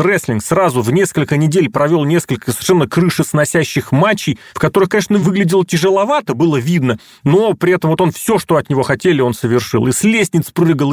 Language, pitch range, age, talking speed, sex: Russian, 135-185 Hz, 30-49, 180 wpm, male